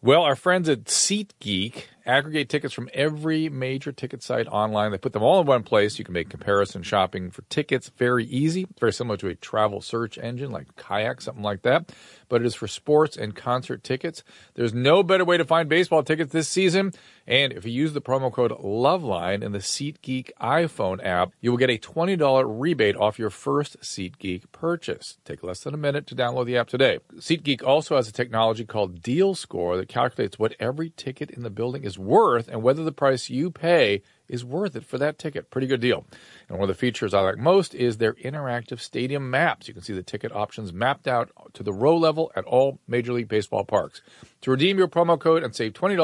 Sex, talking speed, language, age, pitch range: male, 215 wpm, English, 40-59, 110-155 Hz